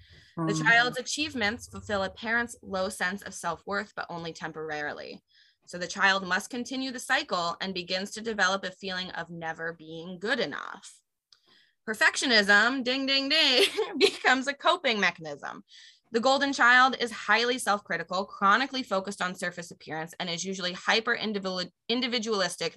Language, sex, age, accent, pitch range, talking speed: English, female, 20-39, American, 180-240 Hz, 140 wpm